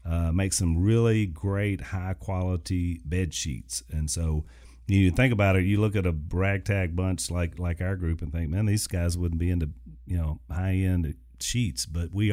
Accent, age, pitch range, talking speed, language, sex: American, 40-59, 85-105 Hz, 185 wpm, English, male